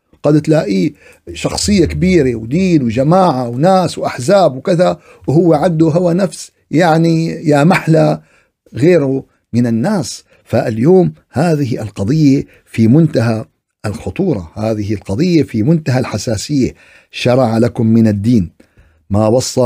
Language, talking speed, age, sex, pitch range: Arabic, 110 wpm, 50-69, male, 125-185 Hz